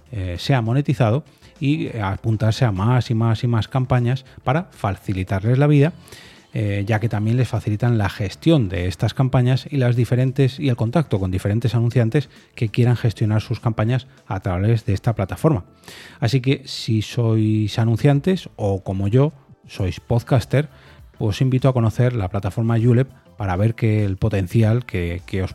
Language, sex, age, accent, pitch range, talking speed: Spanish, male, 30-49, Spanish, 105-130 Hz, 165 wpm